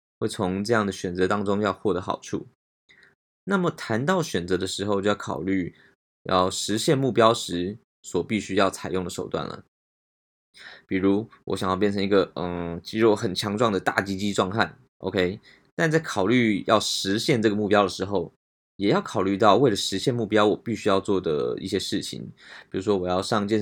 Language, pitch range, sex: Chinese, 95-115 Hz, male